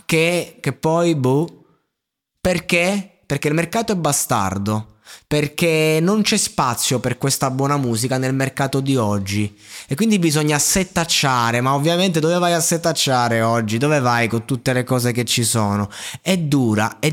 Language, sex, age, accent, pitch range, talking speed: Italian, male, 20-39, native, 115-150 Hz, 160 wpm